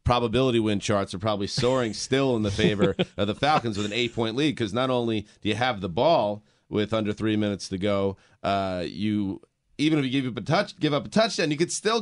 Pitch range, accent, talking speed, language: 105-135 Hz, American, 235 wpm, English